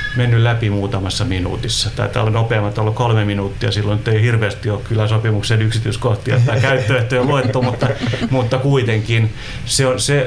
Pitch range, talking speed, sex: 105-125 Hz, 140 wpm, male